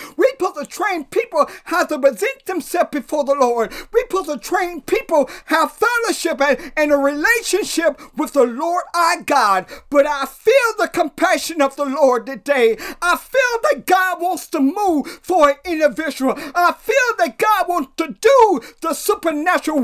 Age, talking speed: 40-59, 170 wpm